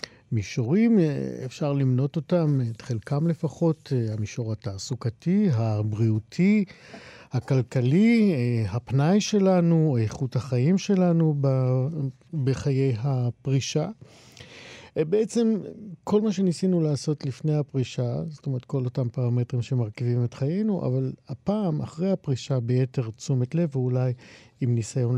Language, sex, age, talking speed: Hebrew, male, 50-69, 100 wpm